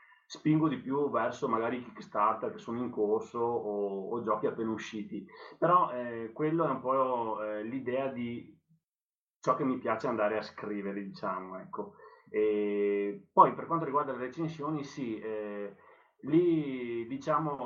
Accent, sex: native, male